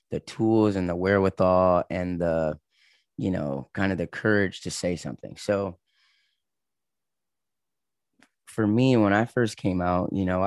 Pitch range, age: 85-100 Hz, 20-39